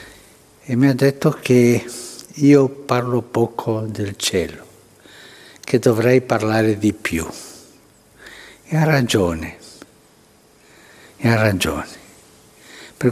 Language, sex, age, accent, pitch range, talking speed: Italian, male, 60-79, native, 110-140 Hz, 100 wpm